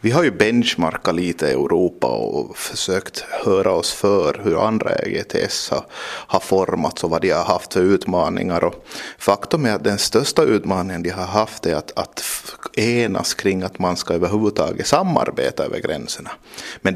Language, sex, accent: Japanese, male, Finnish